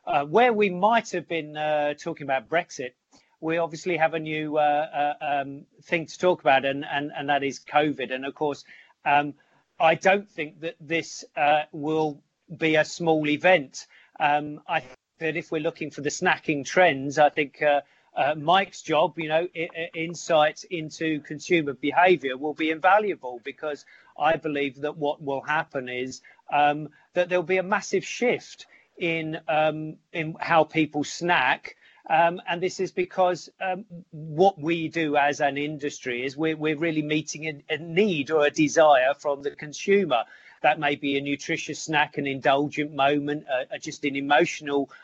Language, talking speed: English, 175 wpm